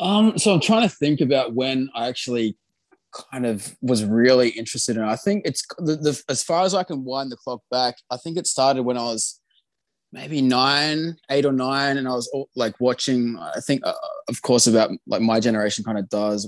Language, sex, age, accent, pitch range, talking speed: English, male, 20-39, Australian, 105-135 Hz, 220 wpm